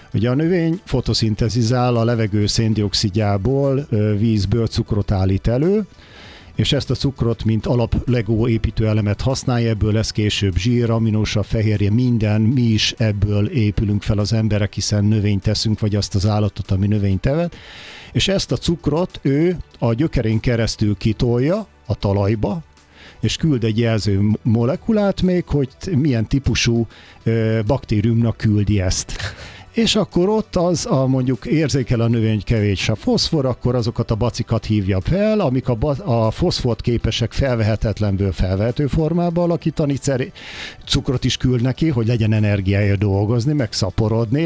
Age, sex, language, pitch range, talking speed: 50-69, male, Hungarian, 105-130 Hz, 145 wpm